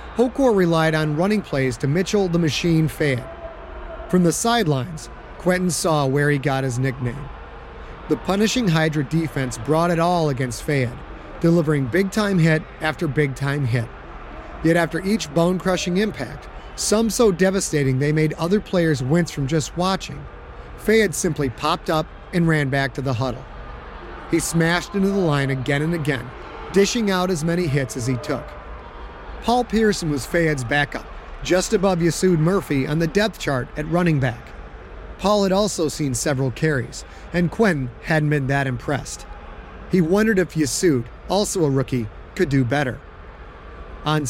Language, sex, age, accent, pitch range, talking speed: English, male, 30-49, American, 140-185 Hz, 155 wpm